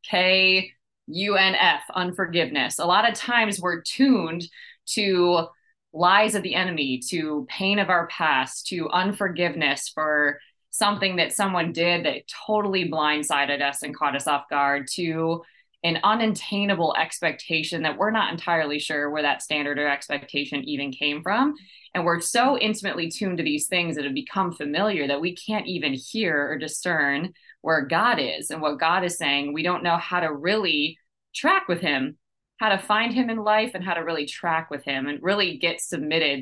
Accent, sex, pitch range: American, female, 150-195 Hz